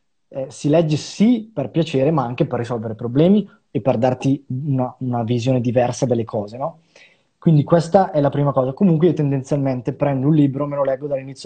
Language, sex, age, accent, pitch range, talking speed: Italian, male, 20-39, native, 130-160 Hz, 200 wpm